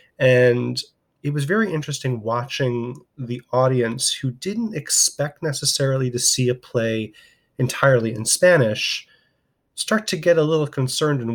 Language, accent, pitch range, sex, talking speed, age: English, American, 115-145 Hz, male, 135 wpm, 30-49